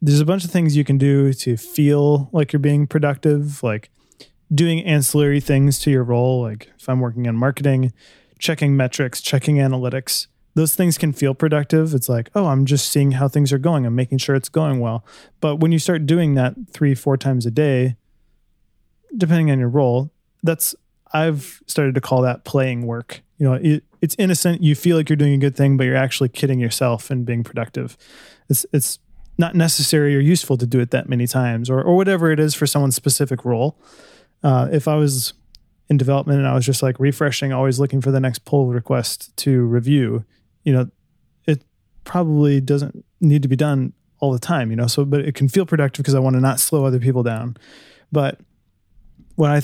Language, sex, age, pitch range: English, male, 20-39, 130-150 Hz